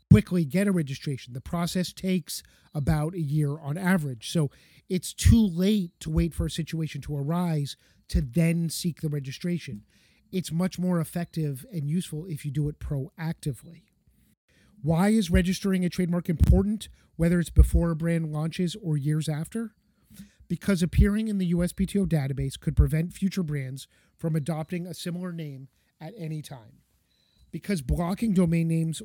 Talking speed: 155 wpm